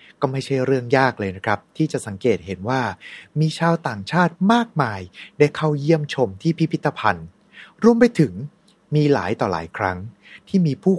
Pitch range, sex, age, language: 115-170 Hz, male, 20-39, Thai